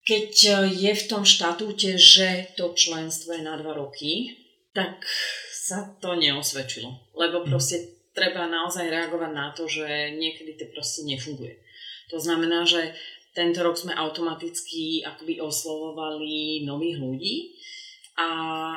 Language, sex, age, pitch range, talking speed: Slovak, female, 30-49, 145-170 Hz, 130 wpm